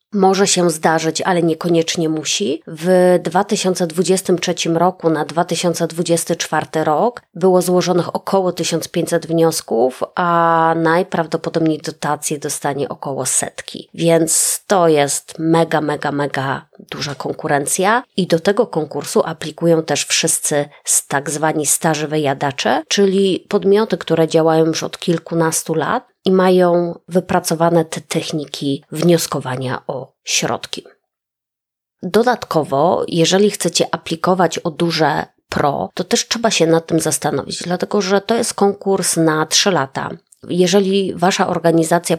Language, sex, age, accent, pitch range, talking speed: Polish, female, 20-39, native, 160-185 Hz, 120 wpm